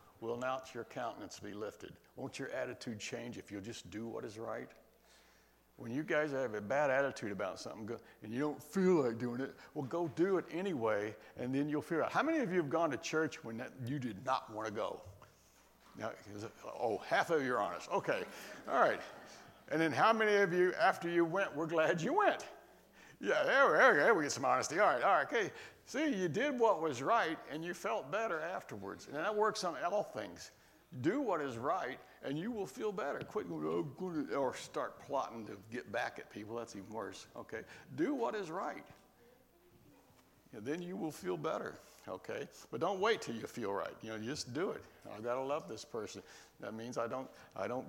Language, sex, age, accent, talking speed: English, male, 60-79, American, 215 wpm